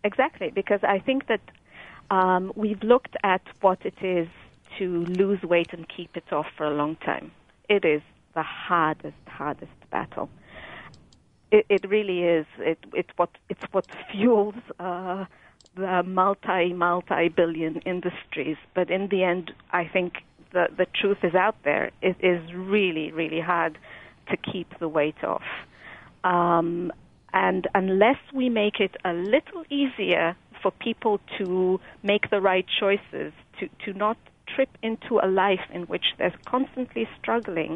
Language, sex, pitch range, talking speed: English, female, 175-205 Hz, 150 wpm